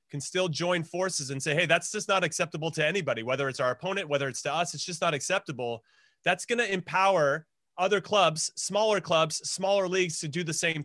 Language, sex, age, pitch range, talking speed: English, male, 30-49, 145-180 Hz, 215 wpm